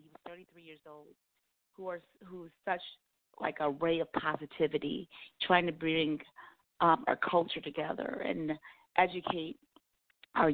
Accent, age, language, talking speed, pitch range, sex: American, 30-49, English, 125 wpm, 165-200 Hz, female